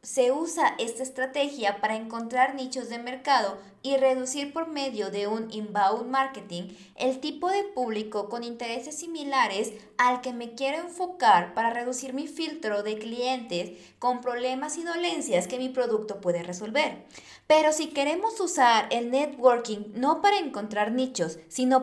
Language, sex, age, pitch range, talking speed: Spanish, female, 20-39, 210-280 Hz, 150 wpm